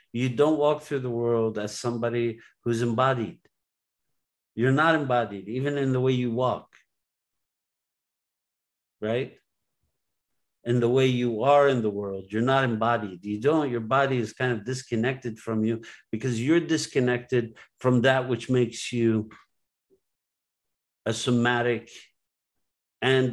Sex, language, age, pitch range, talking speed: male, English, 60-79, 110-125 Hz, 135 wpm